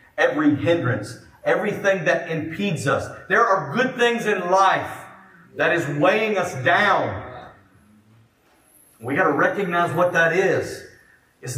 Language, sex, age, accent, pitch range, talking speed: English, male, 40-59, American, 130-195 Hz, 125 wpm